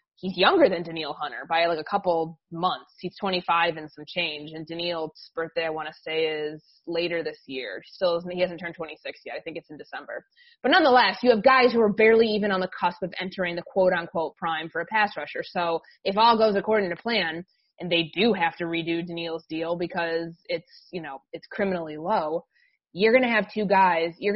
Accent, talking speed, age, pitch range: American, 215 wpm, 20-39, 165-210 Hz